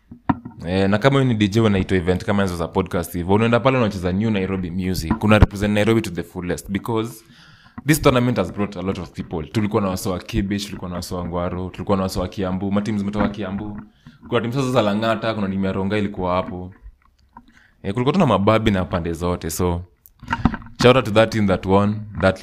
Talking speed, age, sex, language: 200 wpm, 20-39, male, Swahili